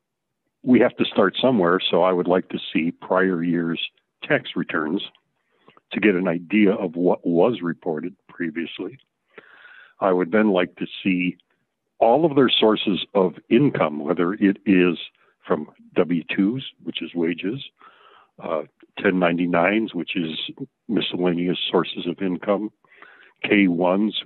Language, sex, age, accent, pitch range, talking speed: English, male, 60-79, American, 90-100 Hz, 130 wpm